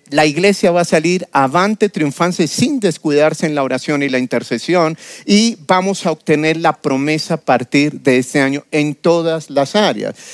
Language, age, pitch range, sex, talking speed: Spanish, 40-59, 135-180 Hz, male, 175 wpm